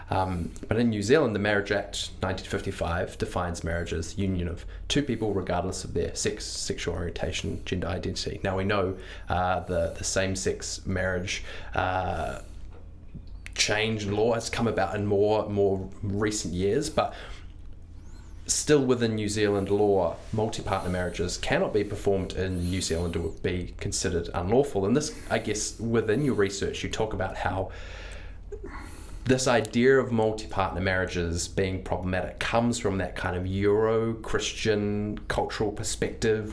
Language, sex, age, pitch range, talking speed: English, male, 20-39, 90-105 Hz, 145 wpm